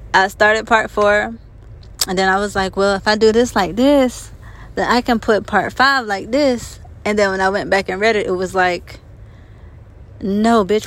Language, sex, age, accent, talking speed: English, female, 20-39, American, 210 wpm